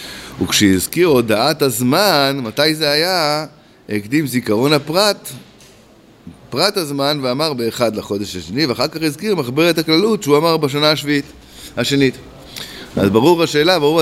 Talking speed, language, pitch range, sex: 125 wpm, Hebrew, 115-150 Hz, male